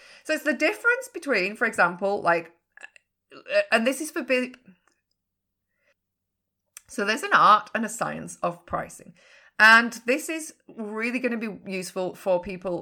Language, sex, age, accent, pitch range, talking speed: English, female, 30-49, British, 175-250 Hz, 145 wpm